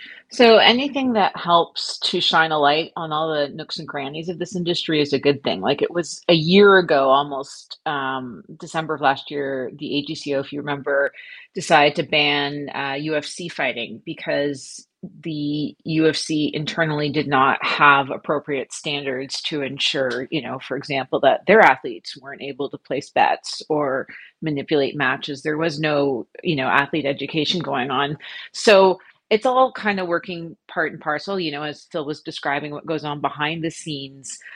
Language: English